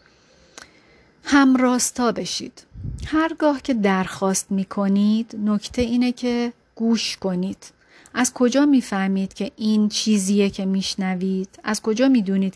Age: 30-49